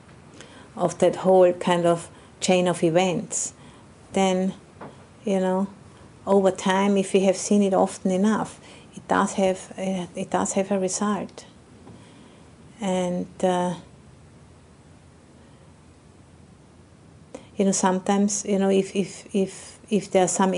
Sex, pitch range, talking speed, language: female, 170-185 Hz, 120 wpm, English